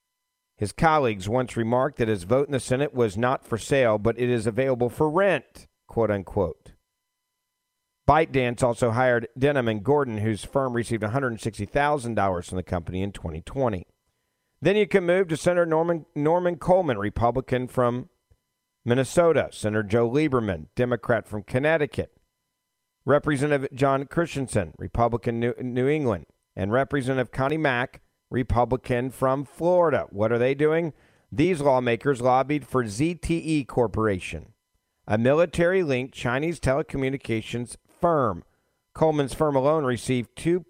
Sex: male